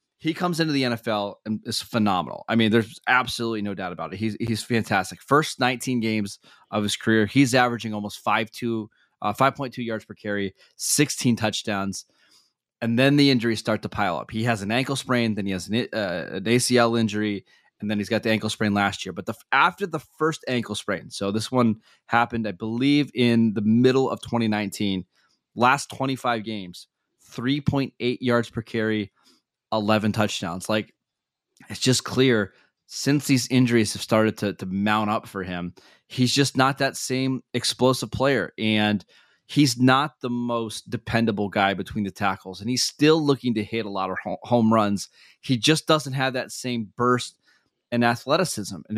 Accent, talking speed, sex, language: American, 180 wpm, male, English